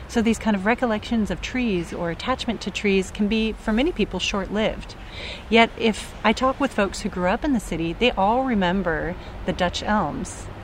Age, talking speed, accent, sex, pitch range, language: 30-49, 195 wpm, American, female, 175-225 Hz, English